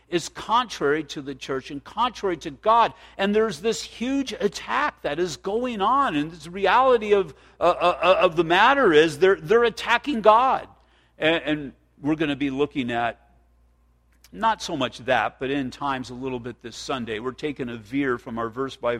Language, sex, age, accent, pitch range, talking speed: English, male, 50-69, American, 120-160 Hz, 190 wpm